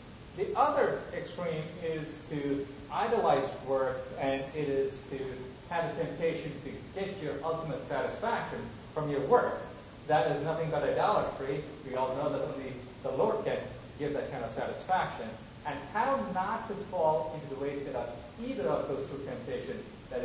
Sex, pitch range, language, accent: male, 125-160 Hz, English, American